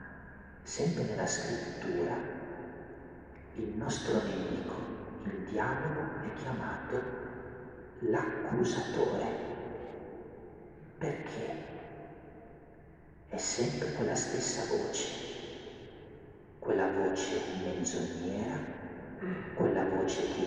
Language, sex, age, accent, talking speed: Italian, male, 50-69, native, 65 wpm